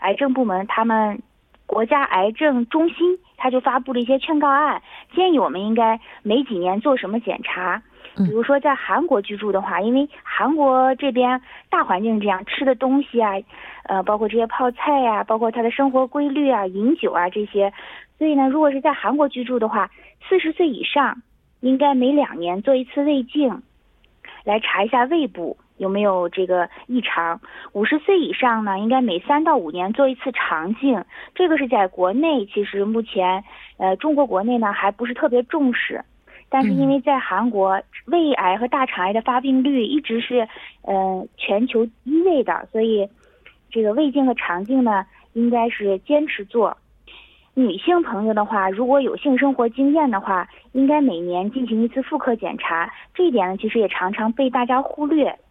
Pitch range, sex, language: 205-280 Hz, female, Korean